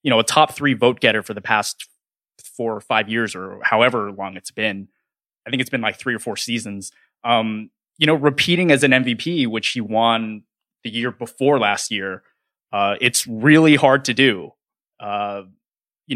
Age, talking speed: 20-39, 190 wpm